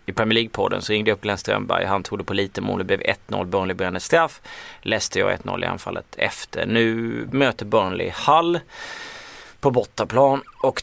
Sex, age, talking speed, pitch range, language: male, 30-49, 185 wpm, 115-150 Hz, Swedish